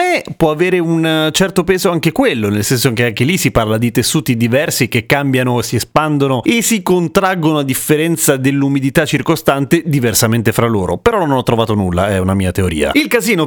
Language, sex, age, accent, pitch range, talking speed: Italian, male, 30-49, native, 115-165 Hz, 185 wpm